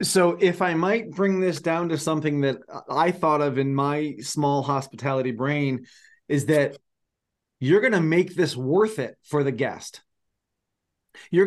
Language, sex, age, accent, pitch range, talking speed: English, male, 30-49, American, 135-170 Hz, 160 wpm